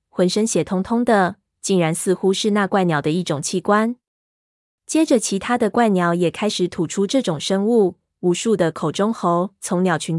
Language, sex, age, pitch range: Chinese, female, 20-39, 170-210 Hz